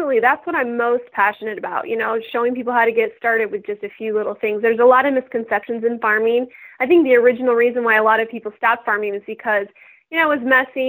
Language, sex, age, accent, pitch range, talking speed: English, female, 20-39, American, 215-260 Hz, 255 wpm